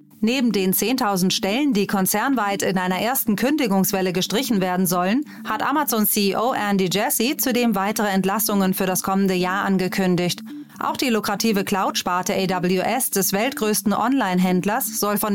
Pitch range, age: 190-230 Hz, 30-49